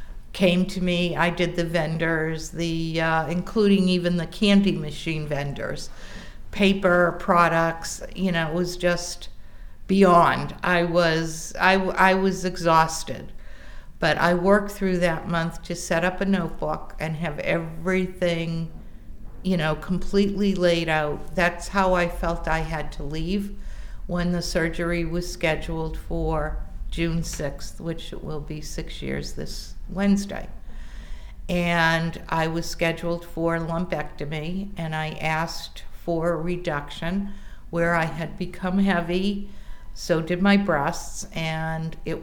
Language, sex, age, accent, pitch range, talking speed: English, female, 50-69, American, 160-180 Hz, 135 wpm